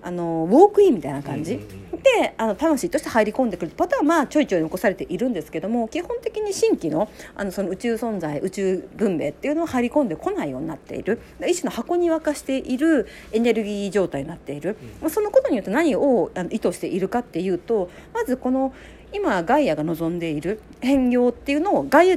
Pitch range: 195-325 Hz